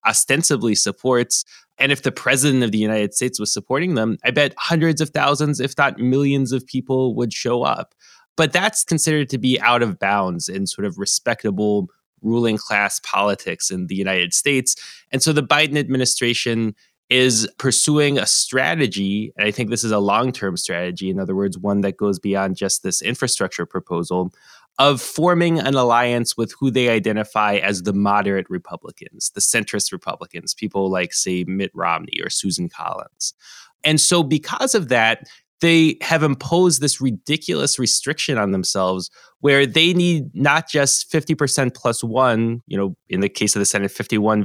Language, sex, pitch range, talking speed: English, male, 100-145 Hz, 170 wpm